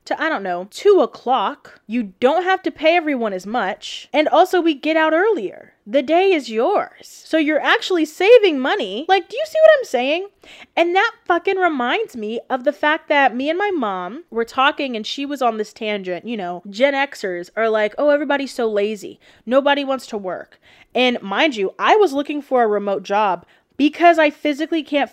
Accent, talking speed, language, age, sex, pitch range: American, 200 wpm, English, 20-39, female, 225-315 Hz